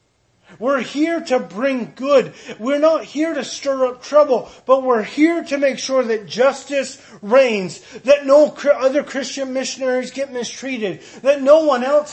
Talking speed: 160 wpm